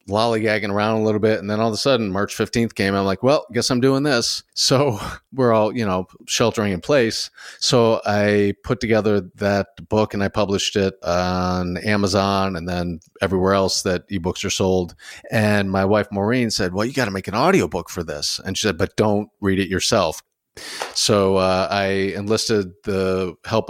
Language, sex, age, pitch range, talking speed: English, male, 40-59, 90-105 Hz, 200 wpm